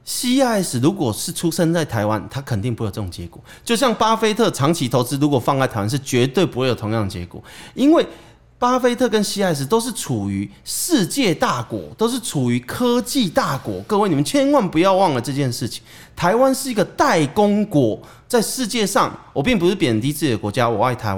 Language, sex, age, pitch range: Chinese, male, 30-49, 120-200 Hz